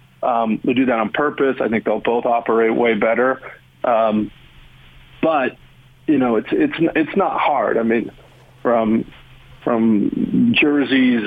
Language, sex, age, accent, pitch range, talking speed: English, male, 40-59, American, 110-130 Hz, 145 wpm